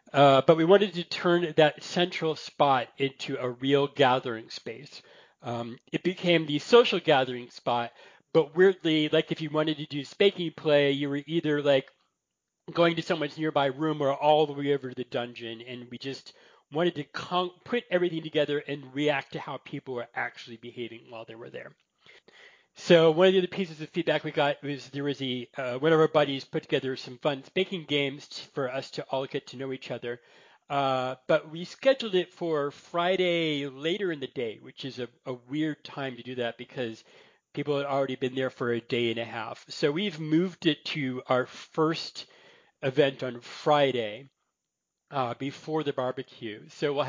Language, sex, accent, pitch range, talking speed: English, male, American, 130-160 Hz, 190 wpm